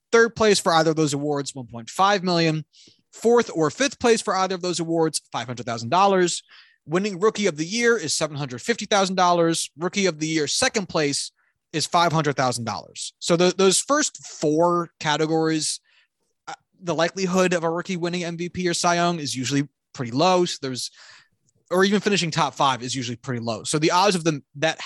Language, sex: English, male